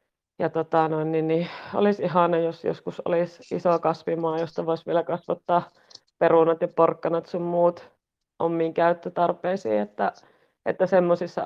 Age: 30-49